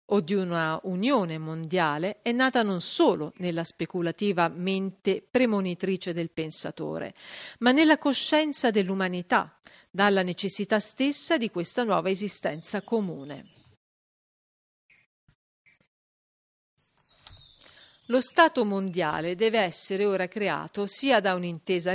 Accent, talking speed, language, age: native, 100 wpm, Italian, 50-69